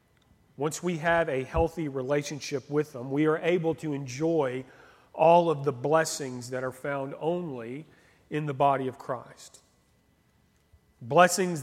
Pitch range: 135-165 Hz